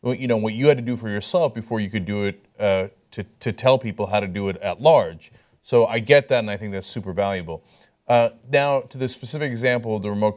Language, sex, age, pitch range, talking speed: English, male, 30-49, 110-135 Hz, 260 wpm